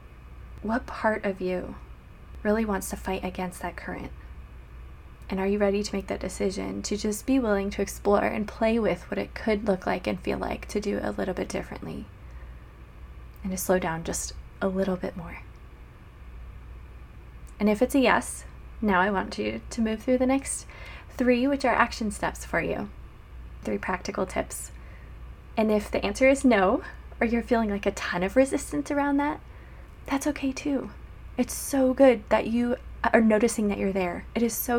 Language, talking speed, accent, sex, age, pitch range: English, 185 wpm, American, female, 20-39, 170-225 Hz